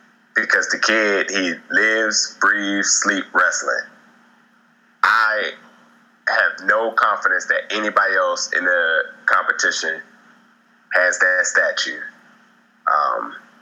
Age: 20-39